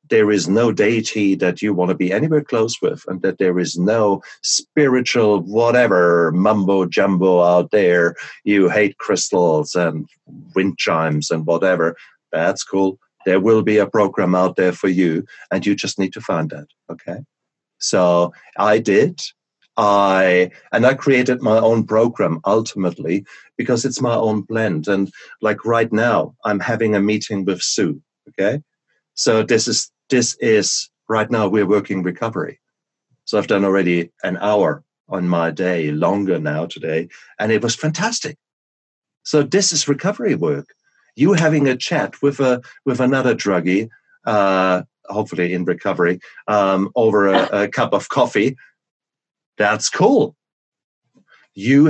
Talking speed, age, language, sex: 150 wpm, 50-69, English, male